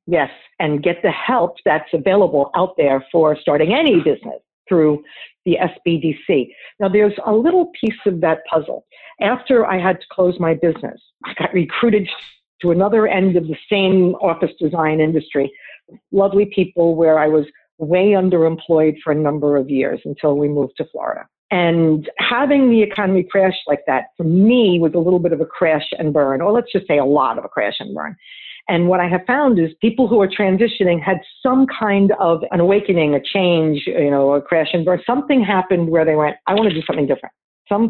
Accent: American